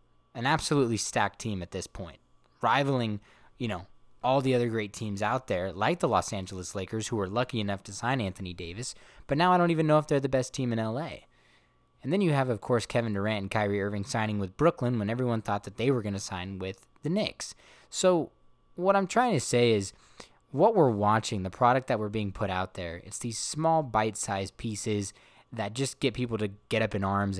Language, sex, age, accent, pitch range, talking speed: English, male, 20-39, American, 100-135 Hz, 220 wpm